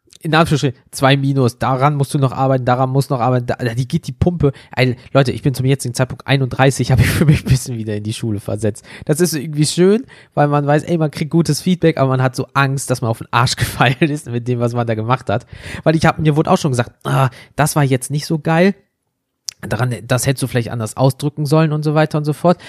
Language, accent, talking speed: German, German, 260 wpm